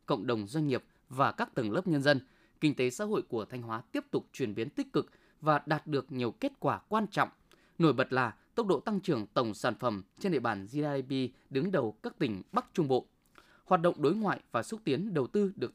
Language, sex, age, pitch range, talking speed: Vietnamese, male, 20-39, 130-195 Hz, 235 wpm